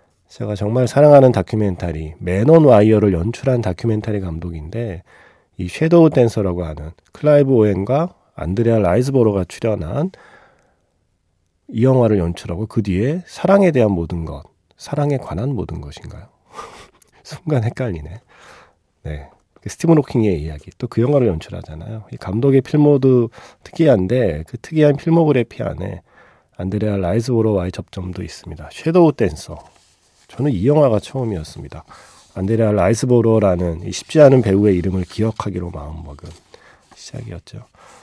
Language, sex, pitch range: Korean, male, 90-125 Hz